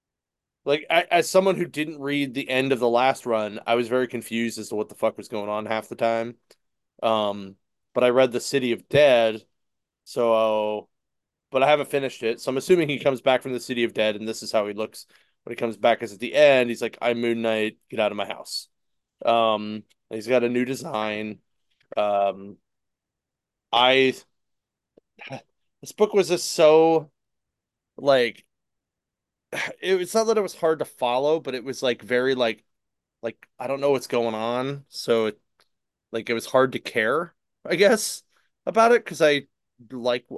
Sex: male